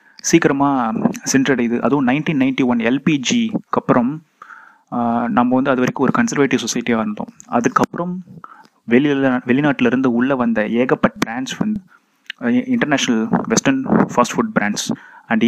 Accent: native